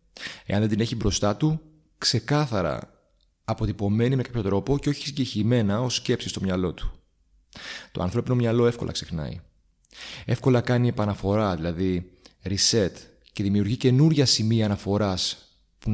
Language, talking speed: Greek, 130 wpm